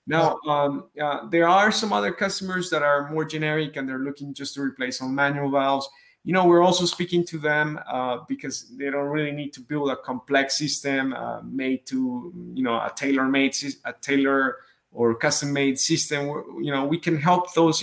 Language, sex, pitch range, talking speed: English, male, 130-155 Hz, 190 wpm